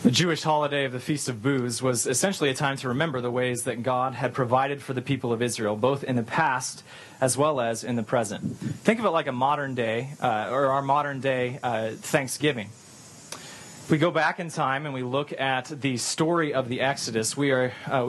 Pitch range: 125-150 Hz